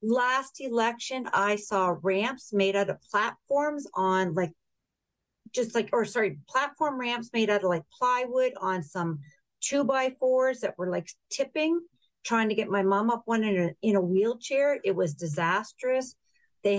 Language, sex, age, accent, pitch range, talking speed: English, female, 50-69, American, 195-255 Hz, 155 wpm